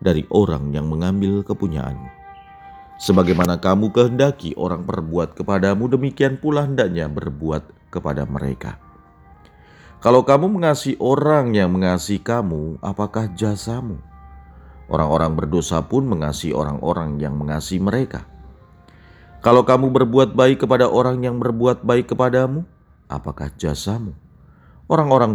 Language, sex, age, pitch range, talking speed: Indonesian, male, 40-59, 80-125 Hz, 110 wpm